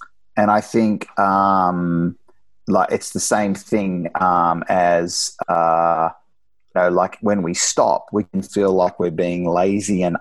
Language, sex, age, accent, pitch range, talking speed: English, male, 30-49, Australian, 90-110 Hz, 155 wpm